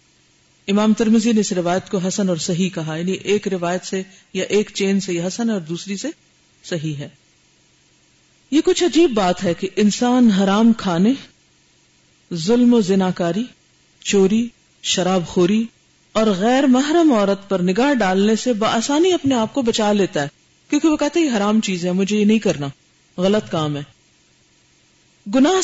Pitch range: 185-240 Hz